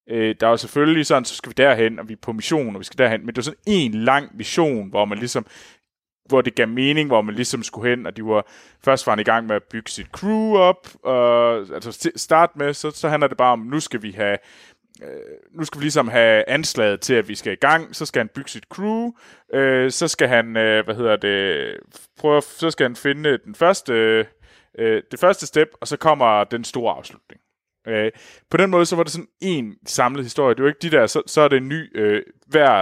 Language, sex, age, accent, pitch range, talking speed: Danish, male, 20-39, native, 115-155 Hz, 235 wpm